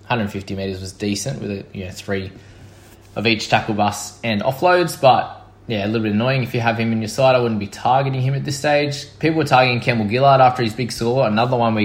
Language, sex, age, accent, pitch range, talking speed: English, male, 20-39, Australian, 100-120 Hz, 245 wpm